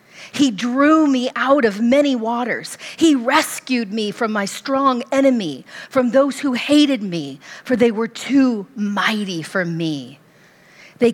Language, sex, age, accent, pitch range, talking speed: English, female, 40-59, American, 185-245 Hz, 145 wpm